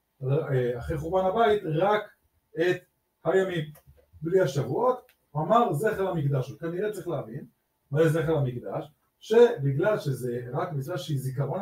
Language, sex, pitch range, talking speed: English, male, 135-185 Hz, 120 wpm